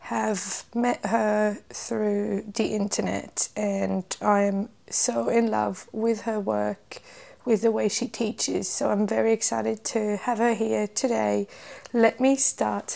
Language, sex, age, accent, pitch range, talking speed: English, female, 20-39, British, 205-240 Hz, 150 wpm